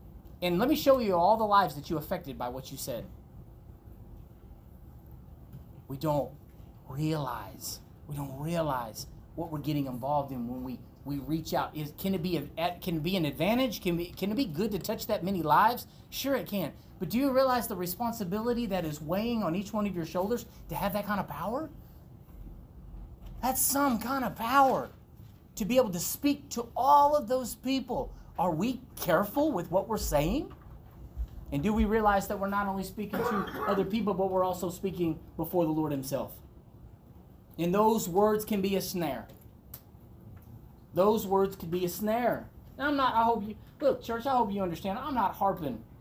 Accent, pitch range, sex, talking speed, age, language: American, 155-220 Hz, male, 185 wpm, 30-49, English